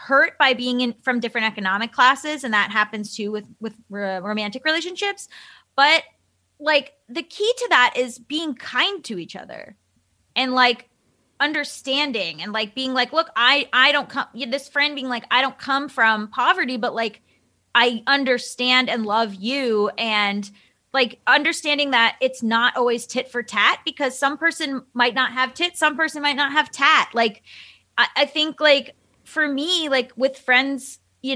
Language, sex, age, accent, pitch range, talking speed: English, female, 20-39, American, 220-275 Hz, 180 wpm